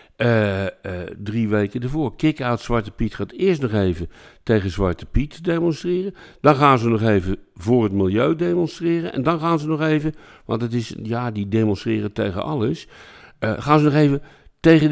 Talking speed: 180 wpm